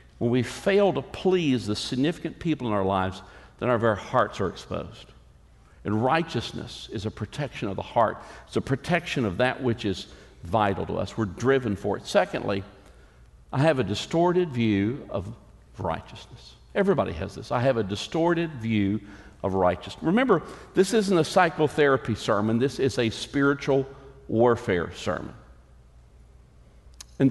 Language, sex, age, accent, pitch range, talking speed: English, male, 60-79, American, 100-150 Hz, 155 wpm